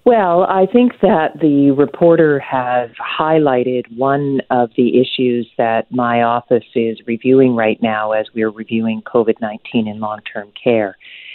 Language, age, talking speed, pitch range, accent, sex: English, 40-59, 150 wpm, 110-135 Hz, American, female